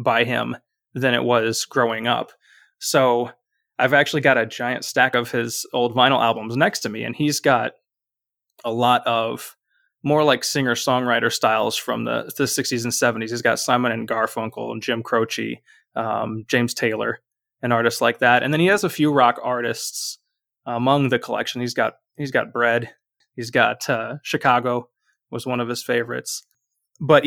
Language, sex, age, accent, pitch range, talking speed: English, male, 20-39, American, 120-140 Hz, 175 wpm